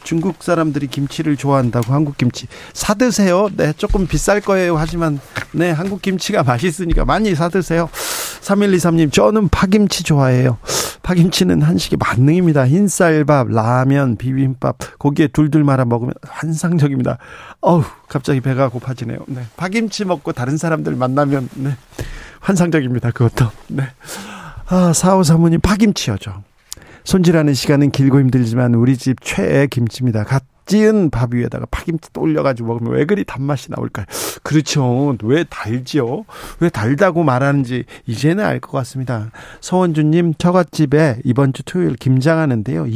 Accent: native